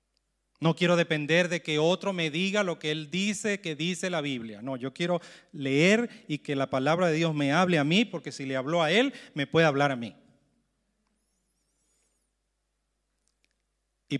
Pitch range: 135-175 Hz